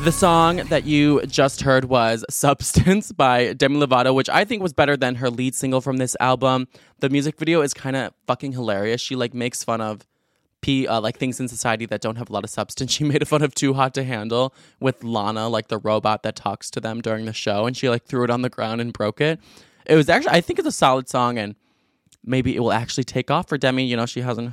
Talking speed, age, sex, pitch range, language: 250 wpm, 20-39, male, 115-140 Hz, English